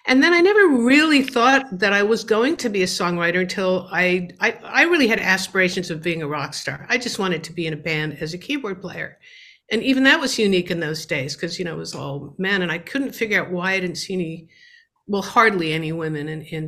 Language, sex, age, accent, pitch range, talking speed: English, female, 60-79, American, 170-210 Hz, 250 wpm